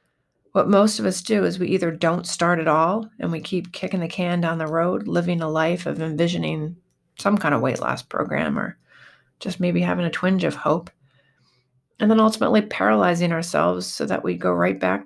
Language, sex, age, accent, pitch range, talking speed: English, female, 30-49, American, 130-190 Hz, 205 wpm